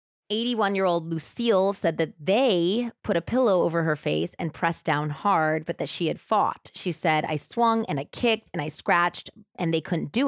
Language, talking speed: English, 200 wpm